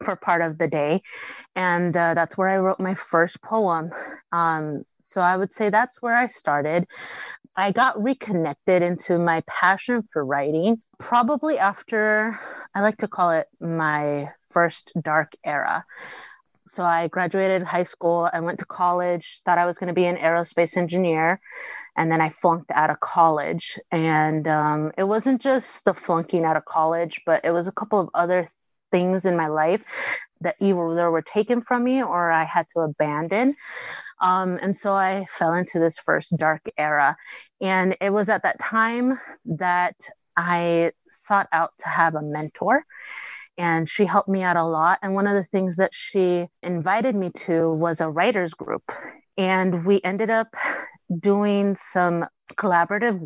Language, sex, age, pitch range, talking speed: English, female, 30-49, 165-200 Hz, 170 wpm